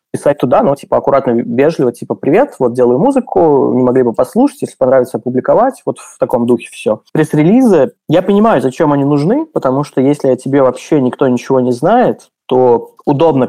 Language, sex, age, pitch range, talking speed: Russian, male, 20-39, 120-145 Hz, 180 wpm